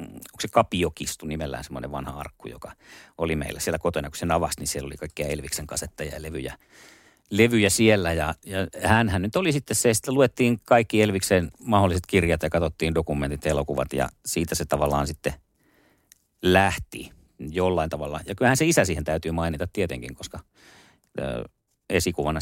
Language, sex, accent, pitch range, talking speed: Finnish, male, native, 80-115 Hz, 160 wpm